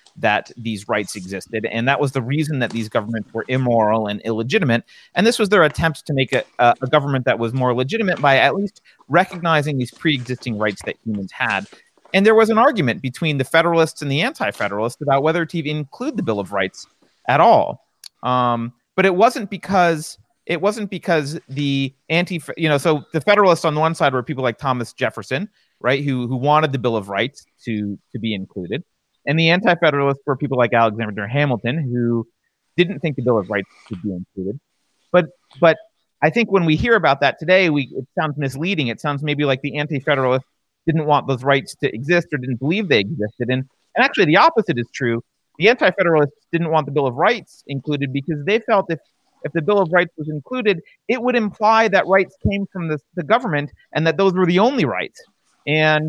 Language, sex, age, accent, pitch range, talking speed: English, male, 30-49, American, 125-170 Hz, 205 wpm